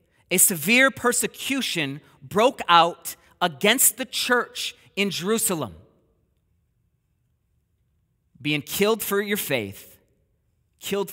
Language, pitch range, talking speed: English, 200-285 Hz, 85 wpm